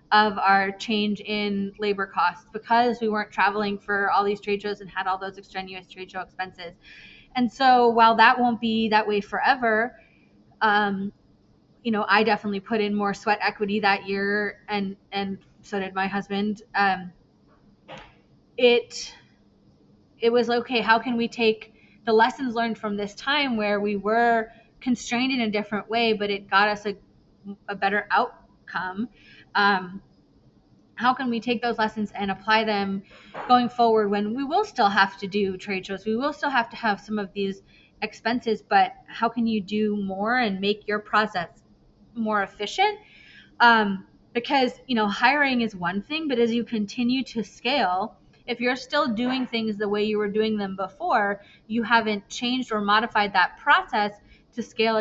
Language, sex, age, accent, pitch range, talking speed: English, female, 20-39, American, 200-235 Hz, 175 wpm